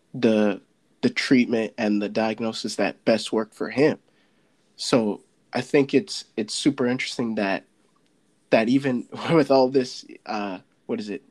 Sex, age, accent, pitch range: male, 20-39, American, 110-130 Hz